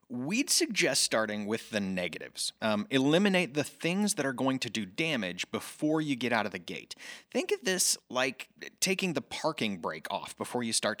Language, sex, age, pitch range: English, male, 30-49, 115-170 Hz